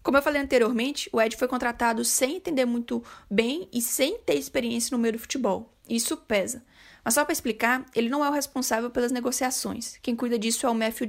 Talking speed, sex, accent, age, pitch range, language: 210 wpm, female, Brazilian, 10-29, 230-270 Hz, Portuguese